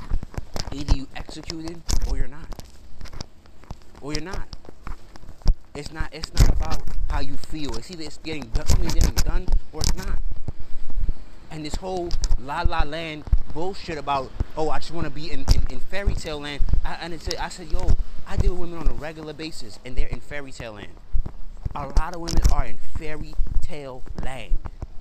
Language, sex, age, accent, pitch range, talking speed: English, male, 30-49, American, 85-140 Hz, 185 wpm